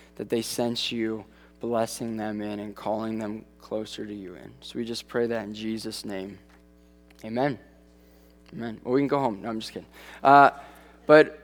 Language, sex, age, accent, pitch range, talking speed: English, male, 20-39, American, 110-150 Hz, 185 wpm